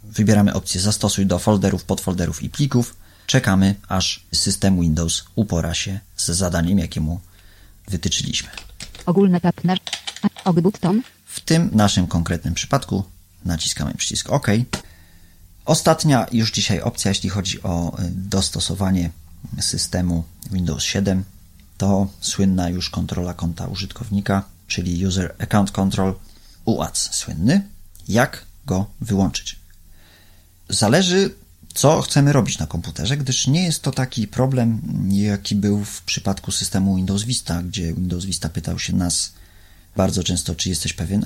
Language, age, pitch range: Polish, 30-49, 90-105 Hz